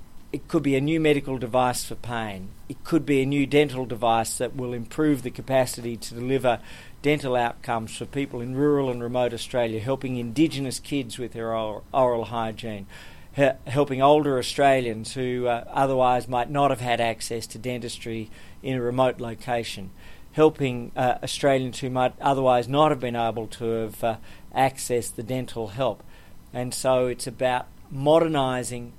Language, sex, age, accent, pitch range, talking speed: English, male, 50-69, Australian, 115-135 Hz, 165 wpm